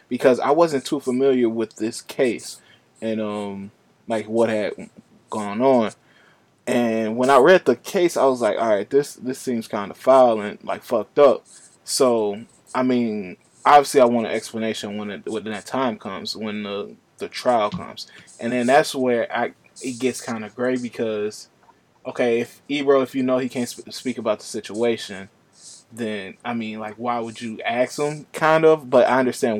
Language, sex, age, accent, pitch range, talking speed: English, male, 20-39, American, 110-130 Hz, 190 wpm